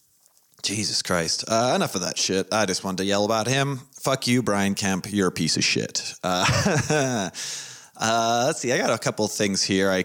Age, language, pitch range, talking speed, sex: 30-49, English, 95-120 Hz, 210 wpm, male